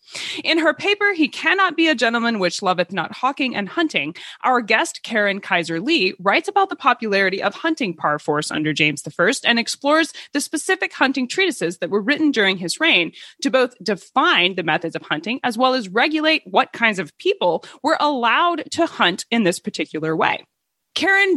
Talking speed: 185 wpm